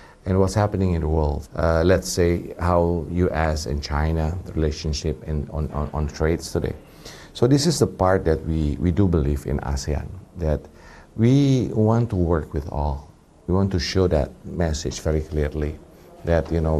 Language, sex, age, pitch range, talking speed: English, male, 50-69, 80-100 Hz, 180 wpm